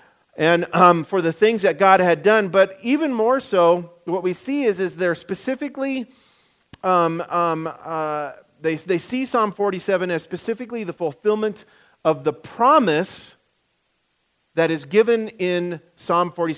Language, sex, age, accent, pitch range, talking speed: English, male, 40-59, American, 160-205 Hz, 150 wpm